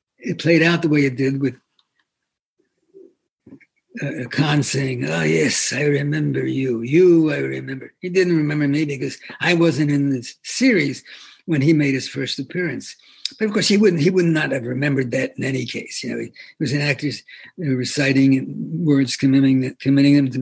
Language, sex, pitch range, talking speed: English, male, 135-165 Hz, 180 wpm